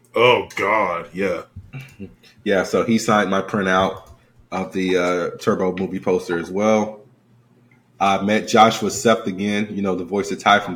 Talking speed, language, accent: 160 wpm, English, American